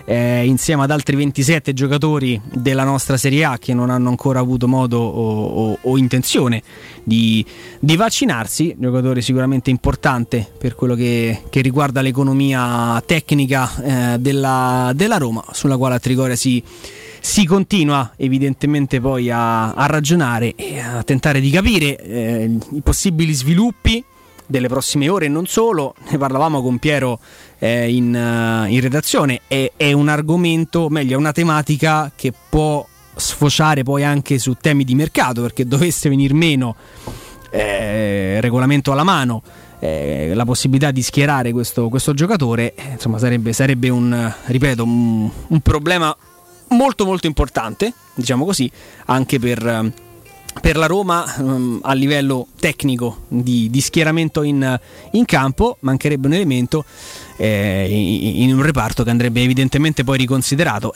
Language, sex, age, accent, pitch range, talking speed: Italian, male, 30-49, native, 120-150 Hz, 140 wpm